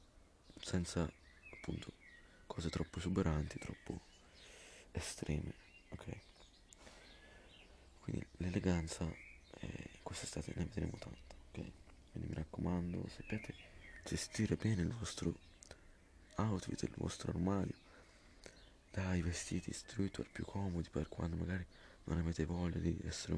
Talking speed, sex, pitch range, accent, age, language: 110 wpm, male, 80-95 Hz, native, 20-39, Italian